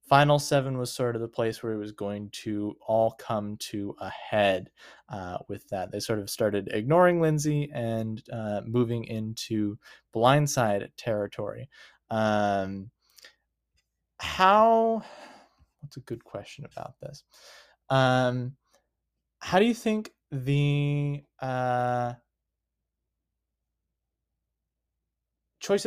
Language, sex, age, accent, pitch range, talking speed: English, male, 20-39, American, 110-145 Hz, 110 wpm